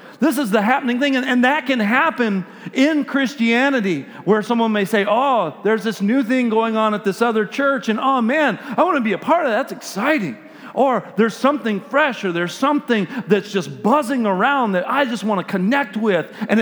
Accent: American